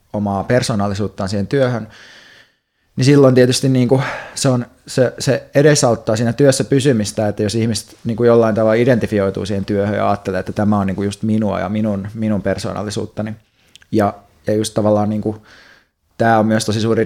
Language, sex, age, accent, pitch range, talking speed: Finnish, male, 30-49, native, 105-115 Hz, 170 wpm